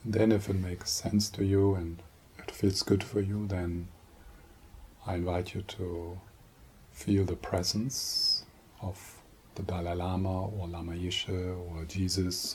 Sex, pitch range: male, 90-100 Hz